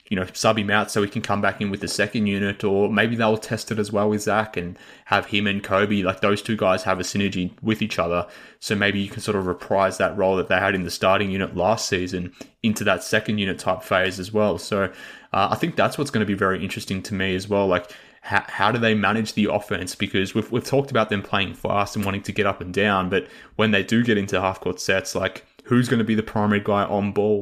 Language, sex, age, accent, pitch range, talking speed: English, male, 20-39, Australian, 95-110 Hz, 265 wpm